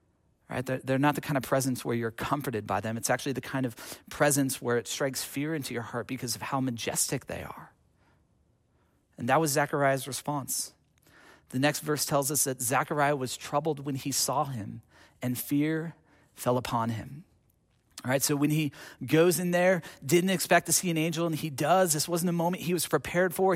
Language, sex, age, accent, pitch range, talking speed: English, male, 40-59, American, 130-190 Hz, 200 wpm